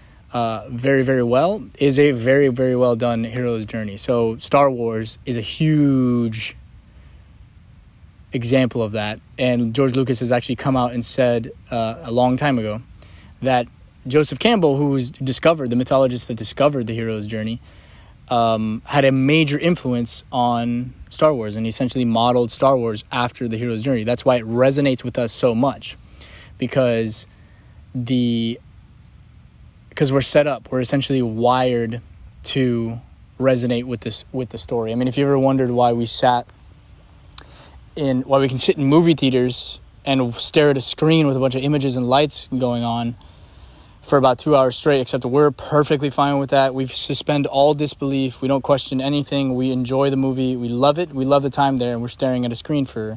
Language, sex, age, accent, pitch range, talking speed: English, male, 20-39, American, 115-135 Hz, 180 wpm